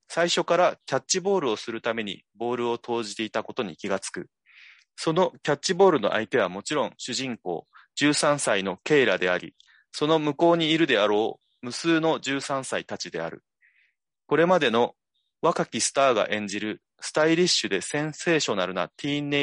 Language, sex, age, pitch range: Japanese, male, 30-49, 115-175 Hz